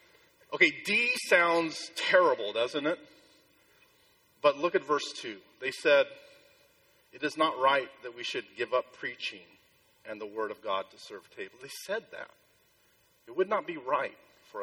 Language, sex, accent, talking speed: English, male, American, 165 wpm